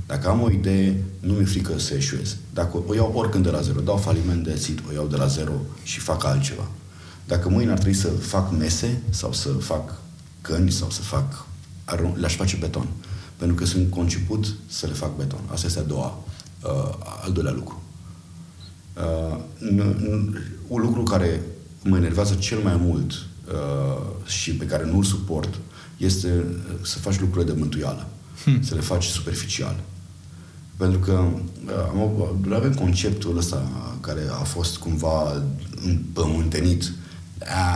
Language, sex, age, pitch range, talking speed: Romanian, male, 30-49, 85-100 Hz, 155 wpm